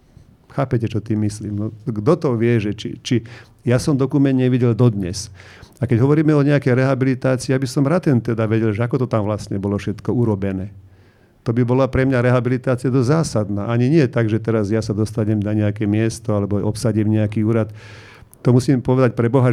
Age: 50-69